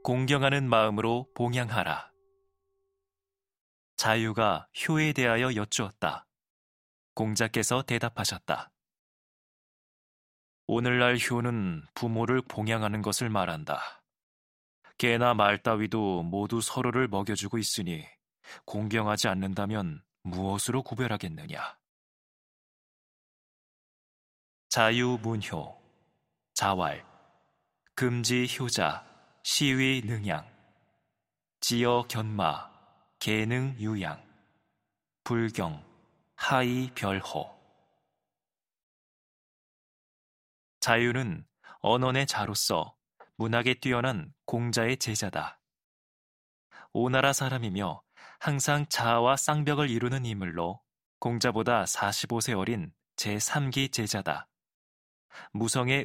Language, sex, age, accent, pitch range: Korean, male, 20-39, native, 105-130 Hz